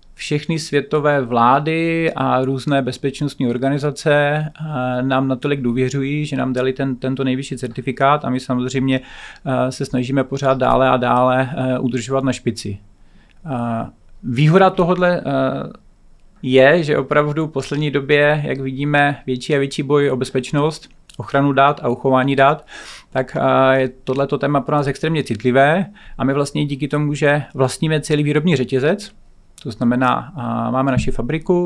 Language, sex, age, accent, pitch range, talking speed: Czech, male, 40-59, native, 125-145 Hz, 140 wpm